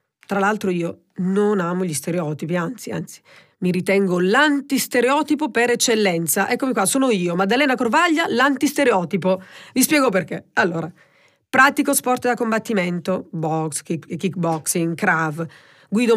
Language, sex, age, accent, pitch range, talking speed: Italian, female, 40-59, native, 170-235 Hz, 125 wpm